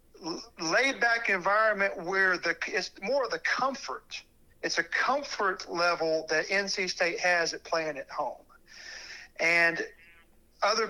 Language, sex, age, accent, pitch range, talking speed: English, male, 50-69, American, 170-235 Hz, 125 wpm